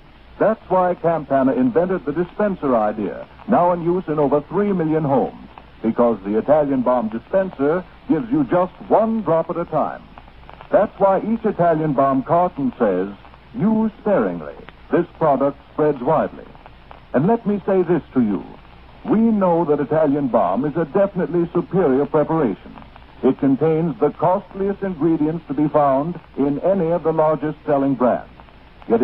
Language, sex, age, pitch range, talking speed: English, male, 60-79, 135-185 Hz, 155 wpm